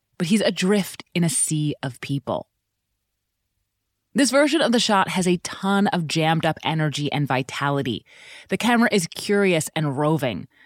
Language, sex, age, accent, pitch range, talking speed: English, female, 30-49, American, 150-205 Hz, 150 wpm